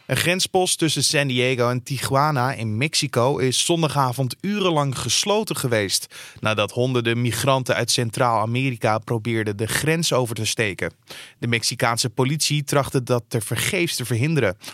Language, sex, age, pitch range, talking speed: Dutch, male, 20-39, 120-155 Hz, 140 wpm